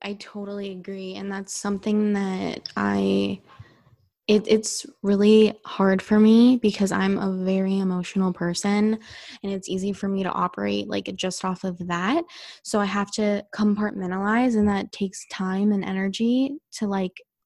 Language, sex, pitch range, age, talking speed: English, female, 195-220 Hz, 20-39, 150 wpm